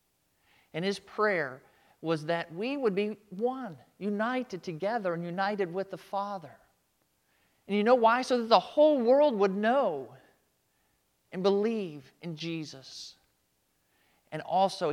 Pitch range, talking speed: 115-190 Hz, 135 wpm